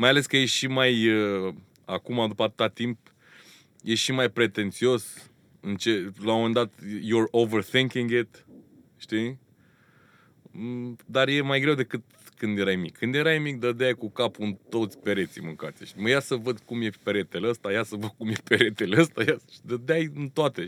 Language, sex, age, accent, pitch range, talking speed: Romanian, male, 20-39, native, 105-130 Hz, 175 wpm